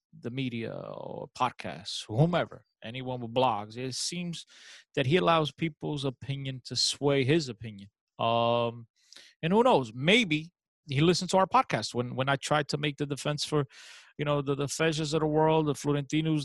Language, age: English, 30-49